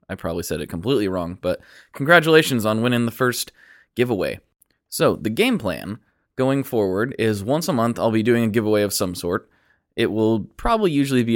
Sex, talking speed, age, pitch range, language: male, 190 wpm, 20-39, 95-115 Hz, English